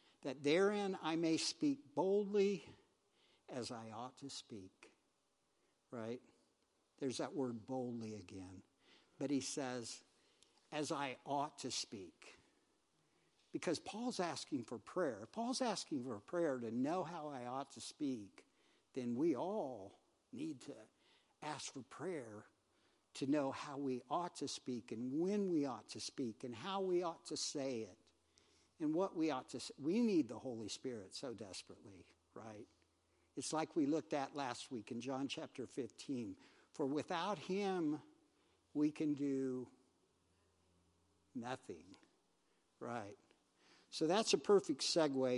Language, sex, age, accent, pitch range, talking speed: English, male, 60-79, American, 130-185 Hz, 145 wpm